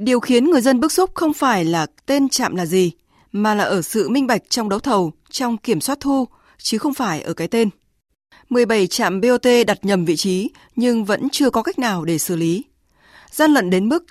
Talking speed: 220 wpm